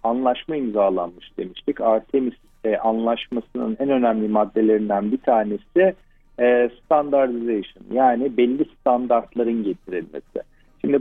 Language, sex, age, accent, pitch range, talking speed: Turkish, male, 50-69, native, 115-150 Hz, 100 wpm